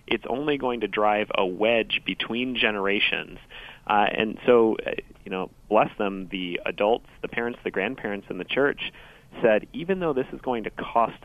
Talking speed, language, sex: 175 wpm, English, male